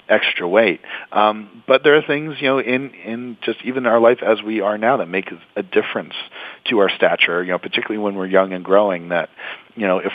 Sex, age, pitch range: male, 40-59, 90-110 Hz